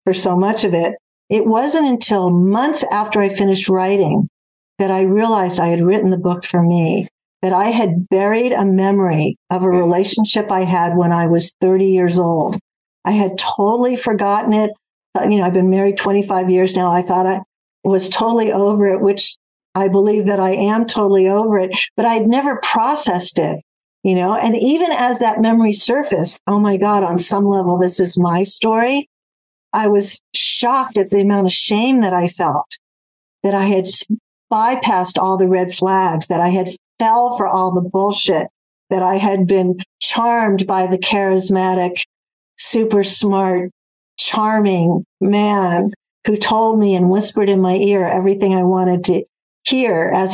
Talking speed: 175 wpm